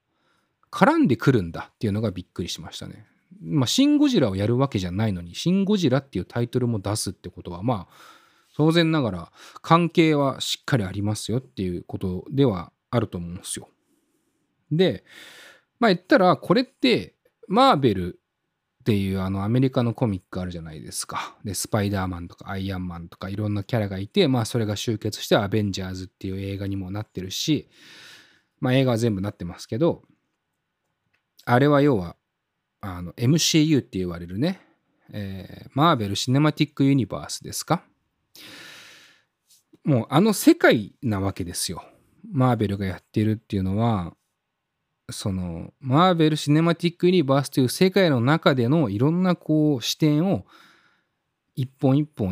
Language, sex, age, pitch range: Japanese, male, 20-39, 100-150 Hz